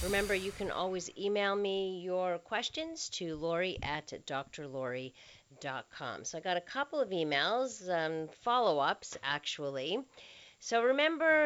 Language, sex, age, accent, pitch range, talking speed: English, female, 40-59, American, 155-215 Hz, 125 wpm